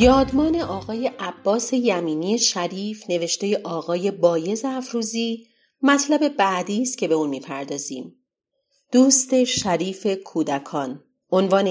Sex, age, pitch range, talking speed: female, 40-59, 165-220 Hz, 100 wpm